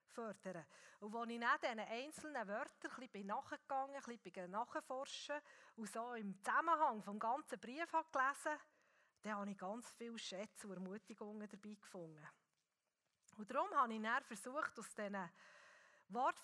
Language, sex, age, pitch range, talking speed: German, female, 40-59, 200-270 Hz, 155 wpm